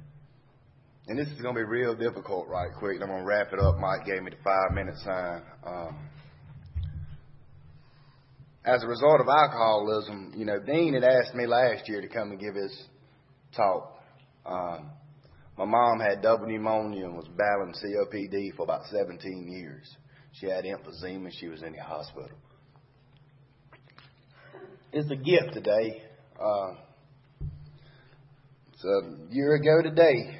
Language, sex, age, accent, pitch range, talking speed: English, male, 30-49, American, 105-140 Hz, 145 wpm